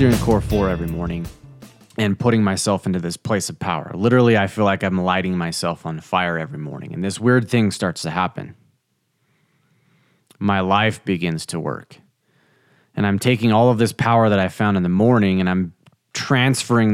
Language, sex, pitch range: English, male, 85-110 Hz